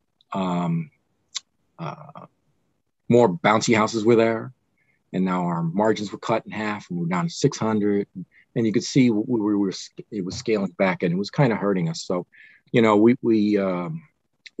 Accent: American